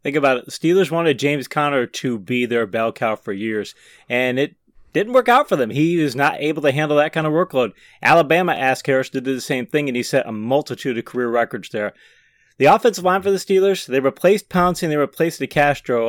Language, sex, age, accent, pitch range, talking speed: English, male, 30-49, American, 120-155 Hz, 230 wpm